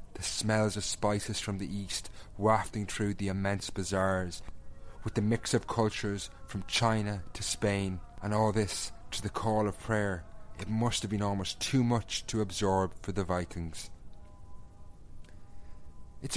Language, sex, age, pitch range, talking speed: English, male, 30-49, 95-115 Hz, 155 wpm